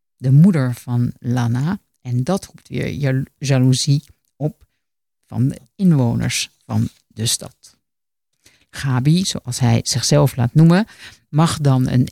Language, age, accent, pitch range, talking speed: Dutch, 50-69, Dutch, 125-155 Hz, 125 wpm